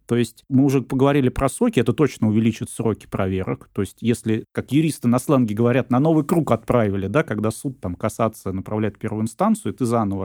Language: Russian